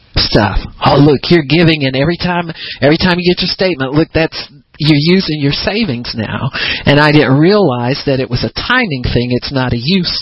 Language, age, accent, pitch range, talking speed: English, 50-69, American, 125-155 Hz, 205 wpm